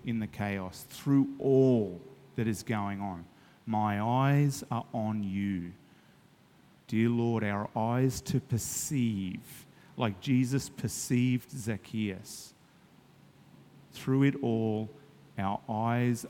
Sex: male